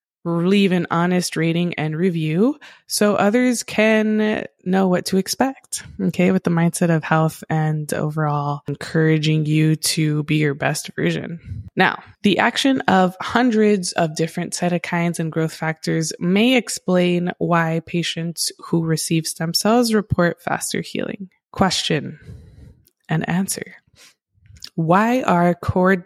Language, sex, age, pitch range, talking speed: English, female, 20-39, 160-200 Hz, 130 wpm